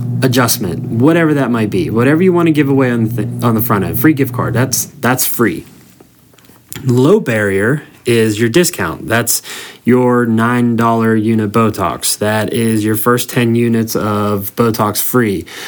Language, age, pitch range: English, 20-39, 105-120 Hz